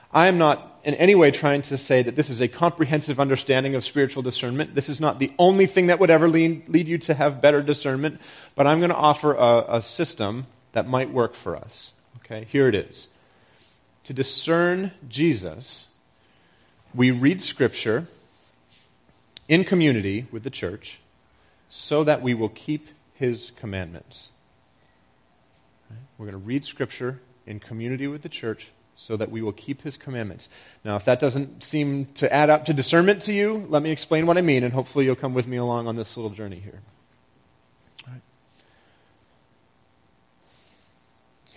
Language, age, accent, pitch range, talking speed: English, 30-49, American, 100-145 Hz, 170 wpm